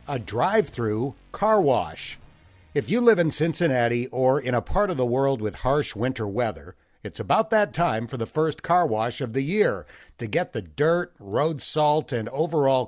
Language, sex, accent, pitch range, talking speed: English, male, American, 115-165 Hz, 190 wpm